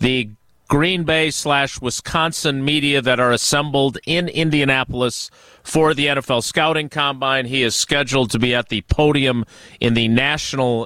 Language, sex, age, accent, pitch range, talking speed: English, male, 40-59, American, 125-165 Hz, 140 wpm